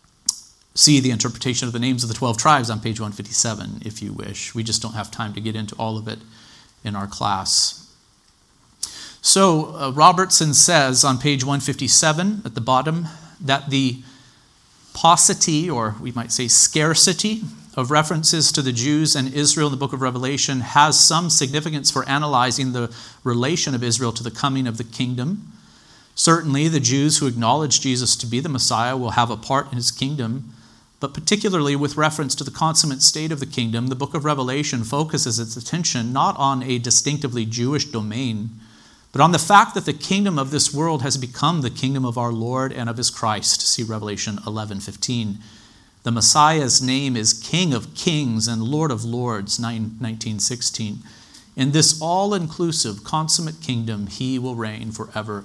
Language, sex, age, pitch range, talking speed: English, male, 40-59, 115-150 Hz, 175 wpm